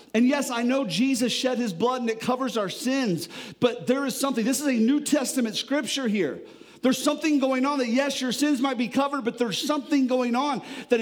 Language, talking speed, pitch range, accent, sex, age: English, 225 wpm, 185-250 Hz, American, male, 40-59